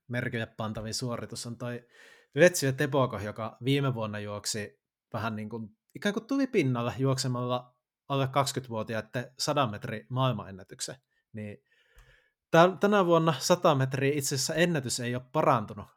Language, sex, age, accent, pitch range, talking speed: Finnish, male, 20-39, native, 115-140 Hz, 130 wpm